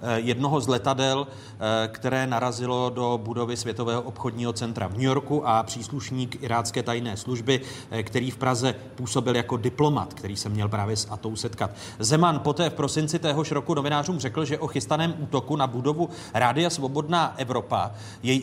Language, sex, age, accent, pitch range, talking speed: Czech, male, 30-49, native, 115-150 Hz, 160 wpm